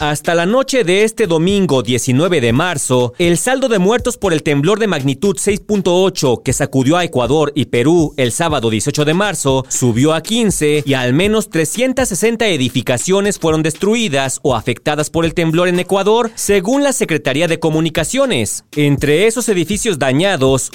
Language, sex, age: Spanish, male, 40-59